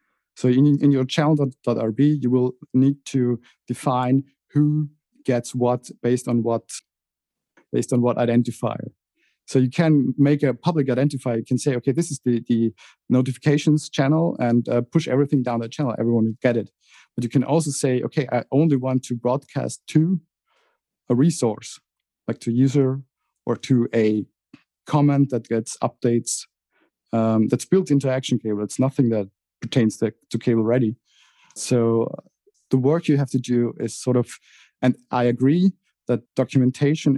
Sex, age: male, 50-69